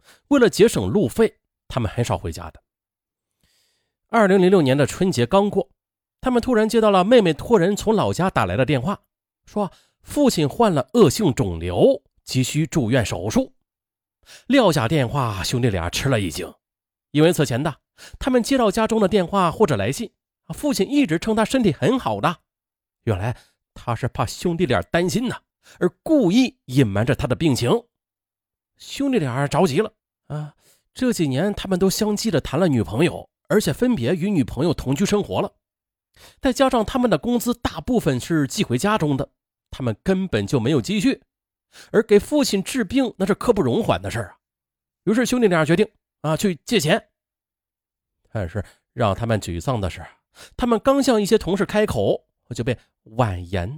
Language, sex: Chinese, male